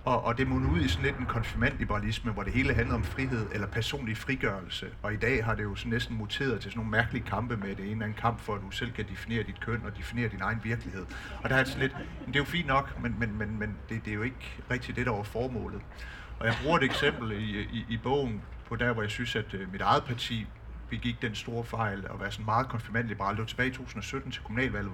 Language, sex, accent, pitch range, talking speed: Danish, male, native, 105-125 Hz, 260 wpm